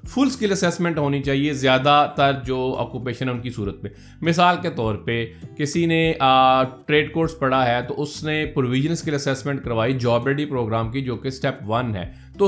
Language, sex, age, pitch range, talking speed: Urdu, male, 30-49, 125-160 Hz, 190 wpm